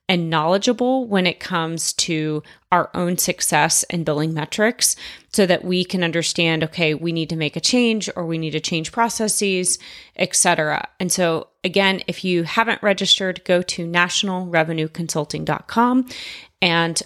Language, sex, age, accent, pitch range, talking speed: English, female, 30-49, American, 165-205 Hz, 150 wpm